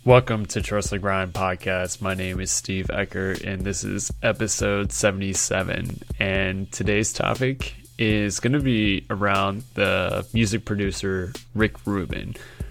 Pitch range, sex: 95-110 Hz, male